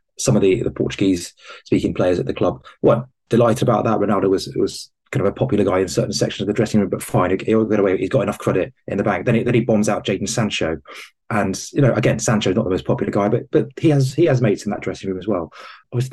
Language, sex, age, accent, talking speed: English, male, 20-39, British, 275 wpm